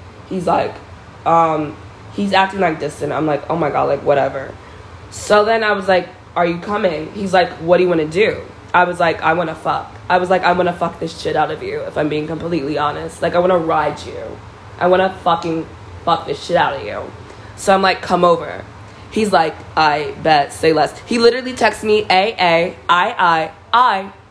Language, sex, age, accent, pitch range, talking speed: English, female, 20-39, American, 160-200 Hz, 210 wpm